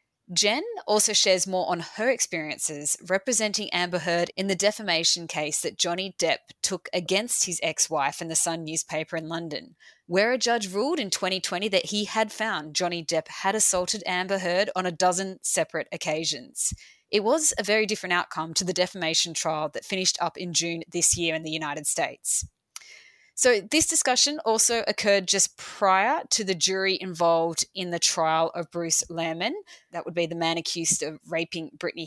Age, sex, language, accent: 20-39, female, English, Australian